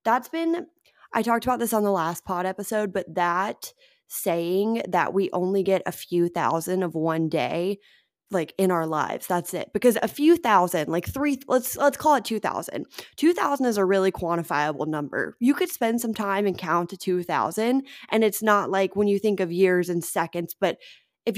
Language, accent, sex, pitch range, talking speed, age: English, American, female, 175-235 Hz, 195 wpm, 20-39